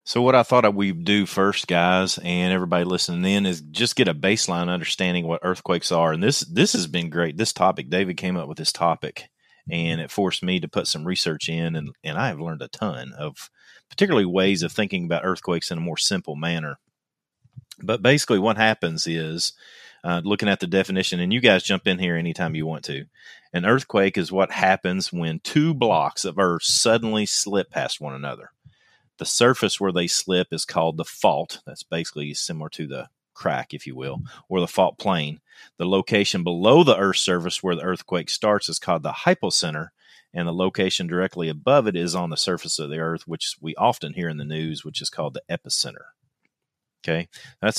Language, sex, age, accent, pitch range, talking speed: English, male, 30-49, American, 80-95 Hz, 200 wpm